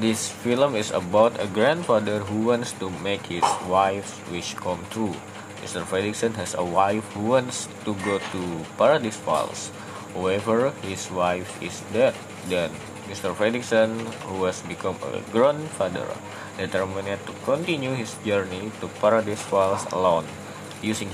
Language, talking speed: English, 140 wpm